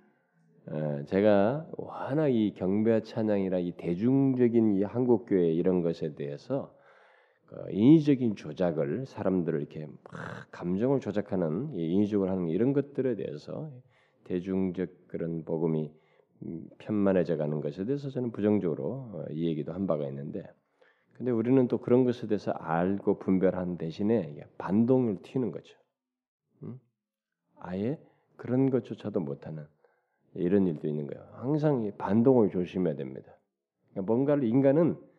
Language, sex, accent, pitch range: Korean, male, native, 90-130 Hz